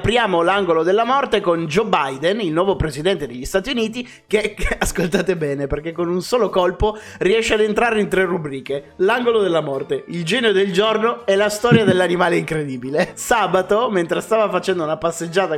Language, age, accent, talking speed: Italian, 30-49, native, 175 wpm